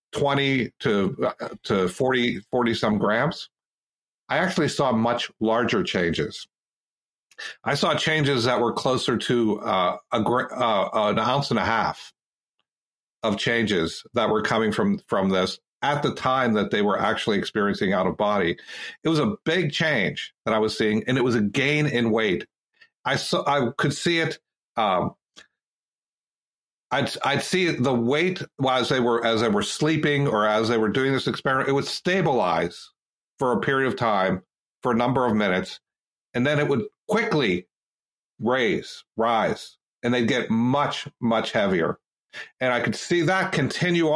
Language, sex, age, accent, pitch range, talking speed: English, male, 50-69, American, 115-160 Hz, 165 wpm